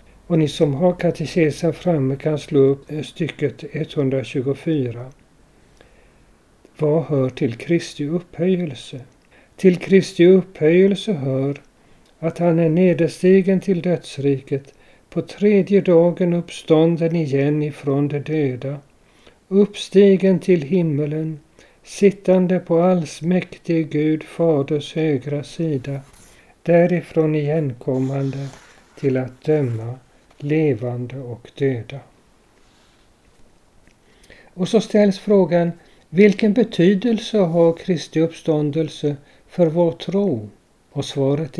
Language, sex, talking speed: Swedish, male, 95 wpm